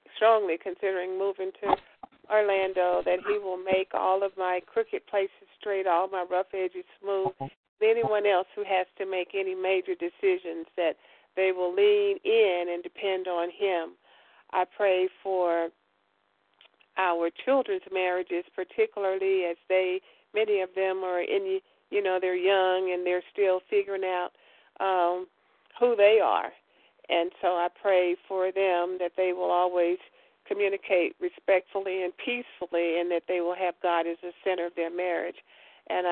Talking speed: 150 wpm